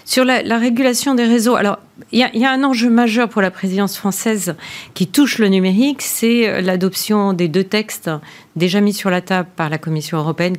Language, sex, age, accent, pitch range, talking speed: French, female, 40-59, French, 160-200 Hz, 205 wpm